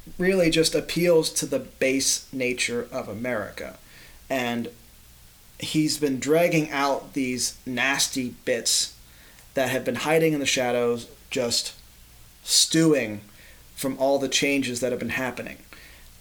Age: 30-49